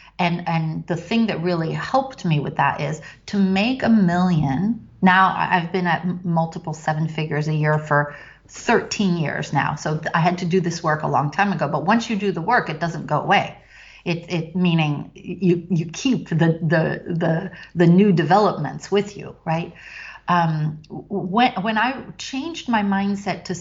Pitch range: 165-205 Hz